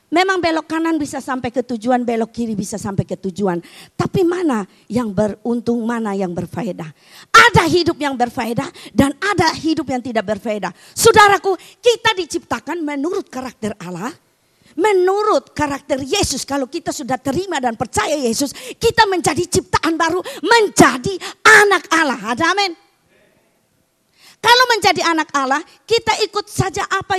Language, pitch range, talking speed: Malay, 245-345 Hz, 140 wpm